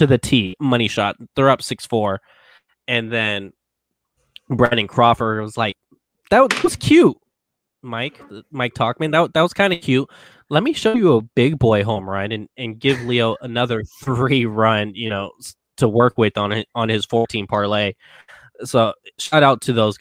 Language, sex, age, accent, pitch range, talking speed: English, male, 20-39, American, 100-115 Hz, 185 wpm